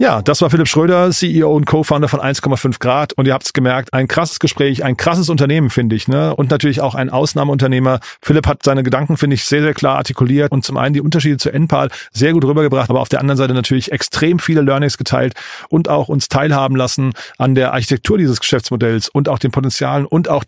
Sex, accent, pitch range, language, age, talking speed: male, German, 125-150 Hz, German, 40-59, 225 wpm